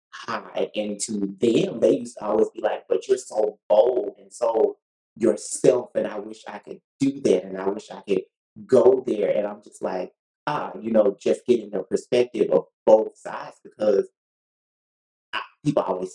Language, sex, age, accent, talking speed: English, male, 30-49, American, 180 wpm